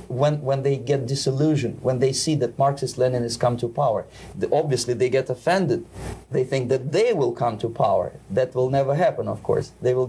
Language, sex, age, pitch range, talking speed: English, male, 30-49, 125-150 Hz, 200 wpm